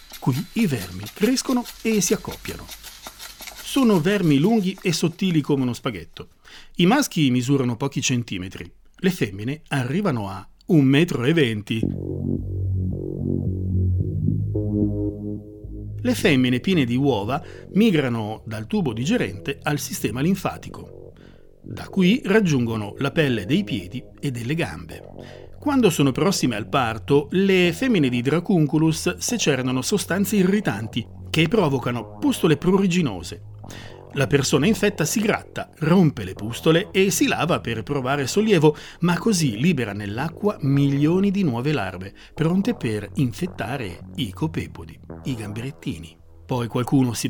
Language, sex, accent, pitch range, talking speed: Italian, male, native, 110-180 Hz, 120 wpm